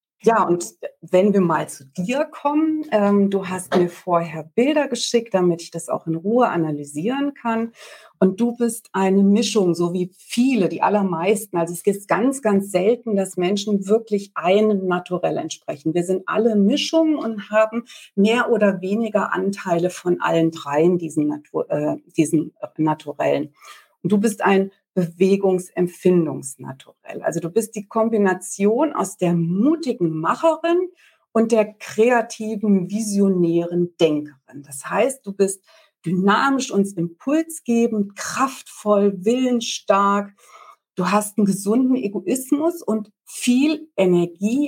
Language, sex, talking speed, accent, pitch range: German, female, 130 wpm, German, 180-240 Hz